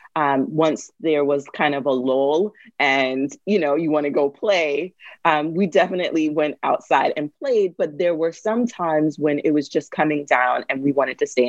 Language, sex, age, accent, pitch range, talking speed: English, female, 30-49, American, 150-200 Hz, 205 wpm